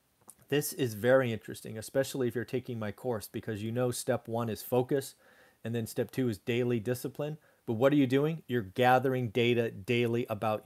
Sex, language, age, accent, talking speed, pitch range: male, English, 40-59, American, 190 wpm, 115-135 Hz